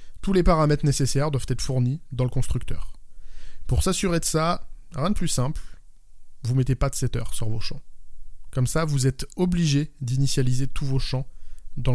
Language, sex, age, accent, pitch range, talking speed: French, male, 20-39, French, 120-150 Hz, 180 wpm